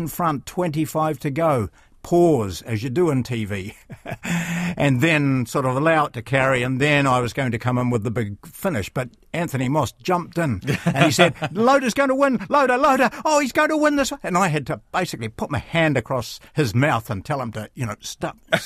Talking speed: 220 wpm